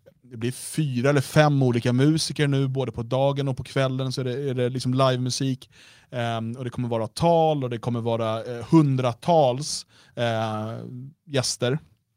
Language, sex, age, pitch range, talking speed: Swedish, male, 30-49, 115-140 Hz, 155 wpm